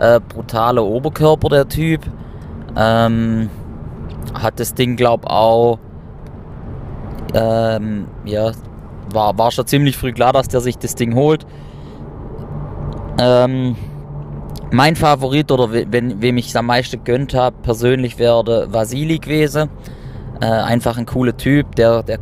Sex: male